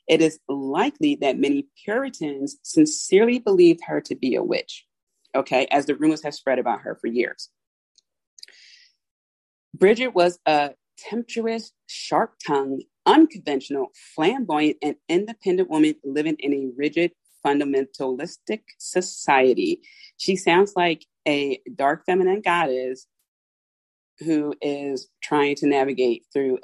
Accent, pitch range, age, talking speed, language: American, 140-215 Hz, 40-59, 115 wpm, English